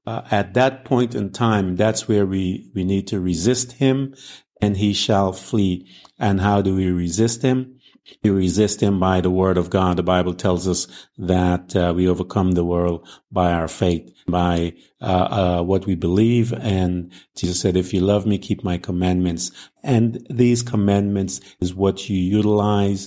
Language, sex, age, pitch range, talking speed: English, male, 50-69, 95-110 Hz, 175 wpm